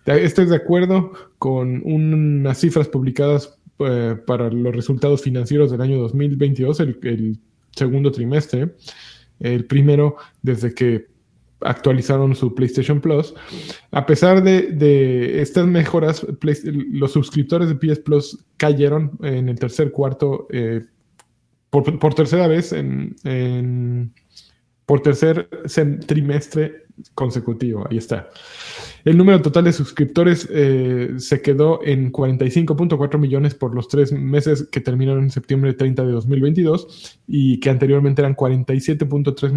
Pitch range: 130-155 Hz